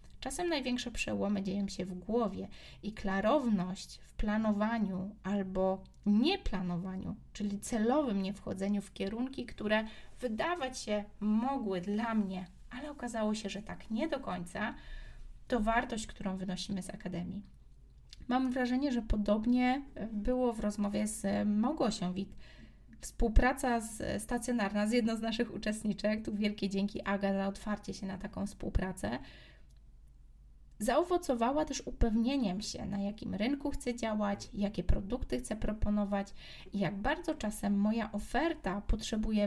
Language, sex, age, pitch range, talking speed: Polish, female, 20-39, 200-245 Hz, 130 wpm